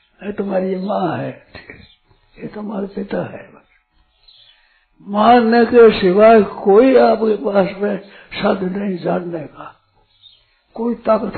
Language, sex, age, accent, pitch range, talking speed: Hindi, male, 60-79, native, 180-220 Hz, 110 wpm